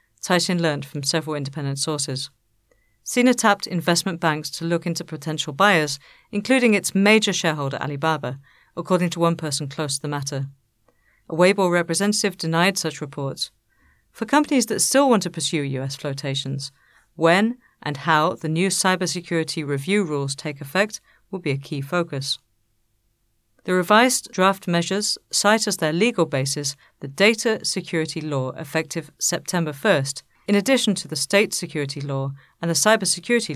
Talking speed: 150 wpm